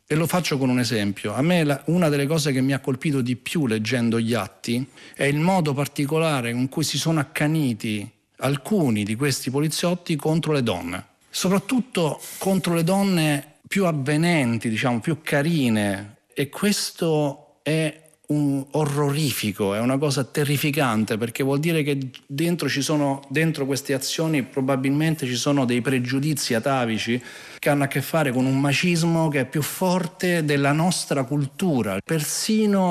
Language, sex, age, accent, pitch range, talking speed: Italian, male, 50-69, native, 125-155 Hz, 155 wpm